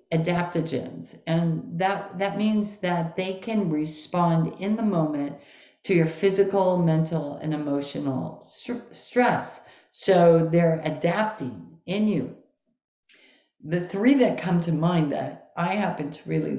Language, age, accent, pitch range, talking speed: English, 50-69, American, 155-180 Hz, 130 wpm